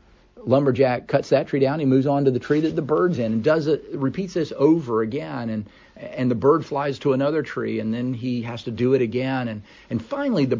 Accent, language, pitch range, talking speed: American, English, 115-155 Hz, 240 wpm